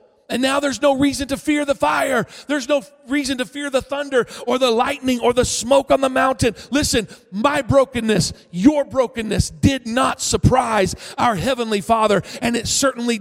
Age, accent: 40-59, American